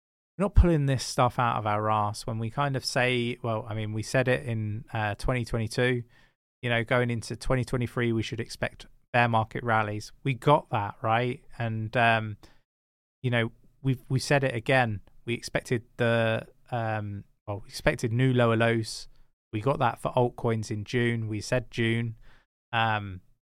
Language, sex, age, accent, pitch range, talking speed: English, male, 20-39, British, 110-135 Hz, 165 wpm